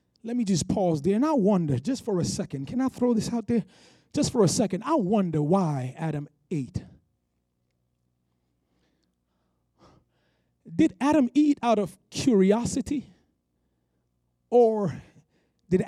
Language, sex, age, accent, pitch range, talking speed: English, male, 30-49, American, 155-225 Hz, 130 wpm